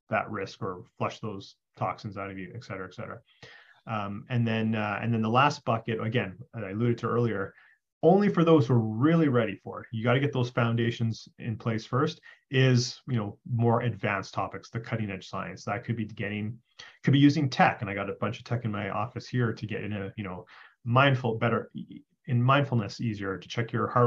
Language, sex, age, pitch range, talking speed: English, male, 30-49, 105-125 Hz, 220 wpm